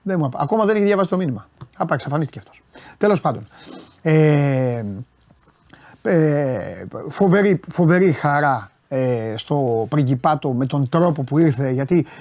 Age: 30-49